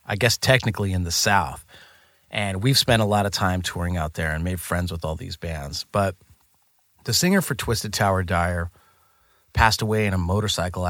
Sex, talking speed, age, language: male, 195 wpm, 30-49, English